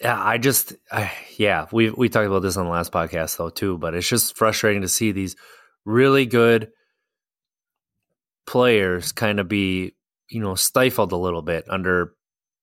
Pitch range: 90-110 Hz